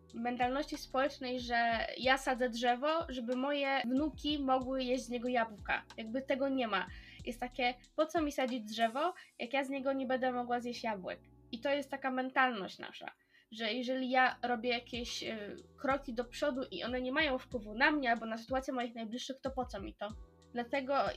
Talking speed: 185 wpm